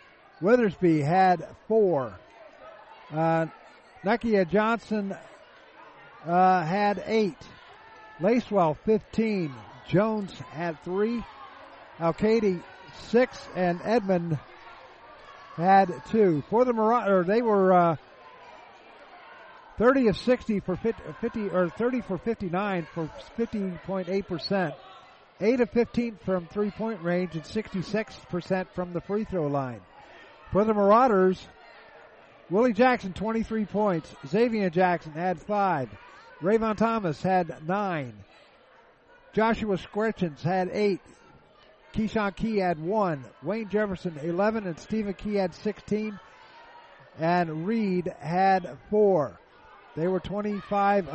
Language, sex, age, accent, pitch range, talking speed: English, male, 50-69, American, 170-215 Hz, 115 wpm